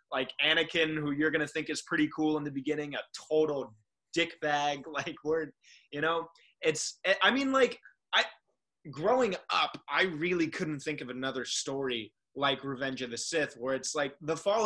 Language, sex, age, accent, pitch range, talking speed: English, male, 20-39, American, 135-165 Hz, 185 wpm